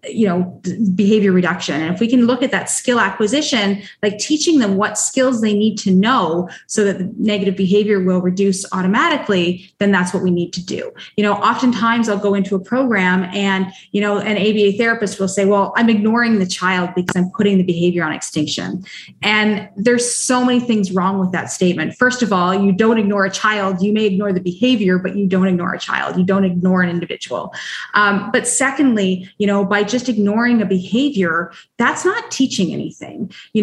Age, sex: 30-49, female